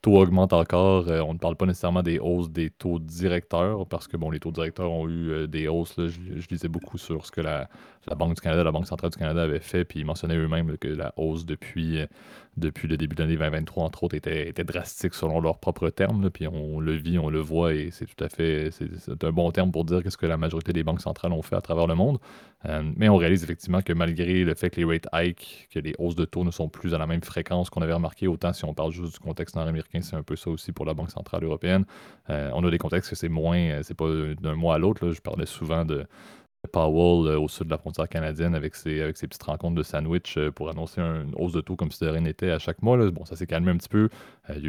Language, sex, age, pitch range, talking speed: French, male, 30-49, 80-85 Hz, 270 wpm